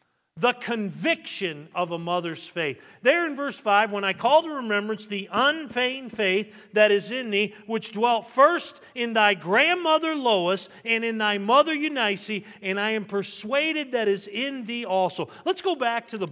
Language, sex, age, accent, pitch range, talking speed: English, male, 40-59, American, 185-255 Hz, 175 wpm